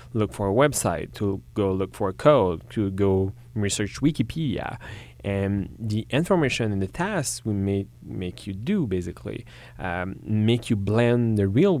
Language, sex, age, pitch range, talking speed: English, male, 30-49, 95-120 Hz, 165 wpm